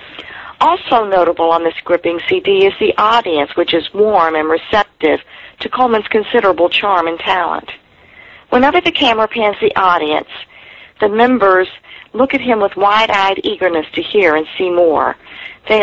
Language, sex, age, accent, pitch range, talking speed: English, female, 50-69, American, 180-240 Hz, 150 wpm